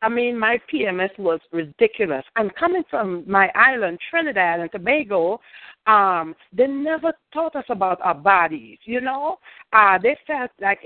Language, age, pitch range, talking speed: English, 60-79, 190-295 Hz, 165 wpm